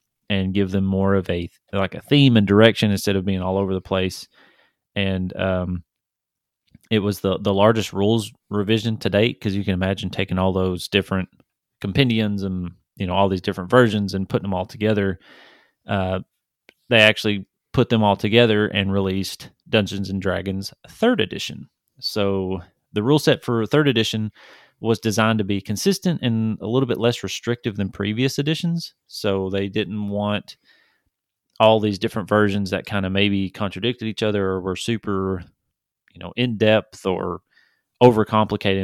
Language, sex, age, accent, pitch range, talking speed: English, male, 30-49, American, 95-110 Hz, 170 wpm